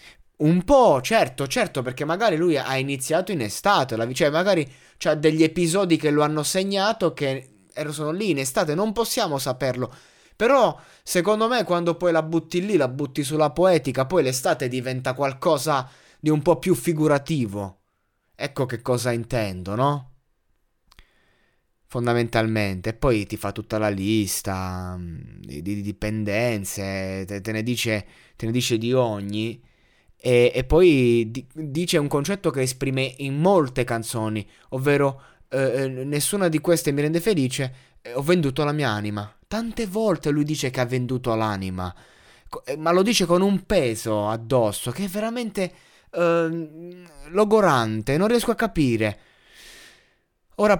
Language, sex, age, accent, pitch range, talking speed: Italian, male, 20-39, native, 115-170 Hz, 145 wpm